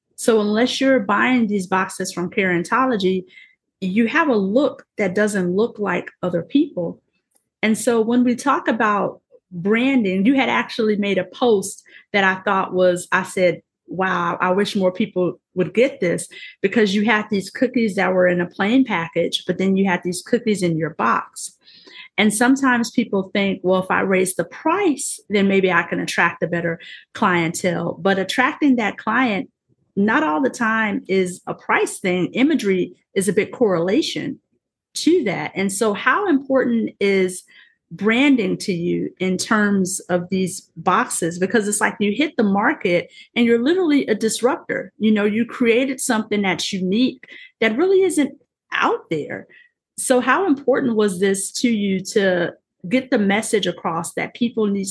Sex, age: female, 30-49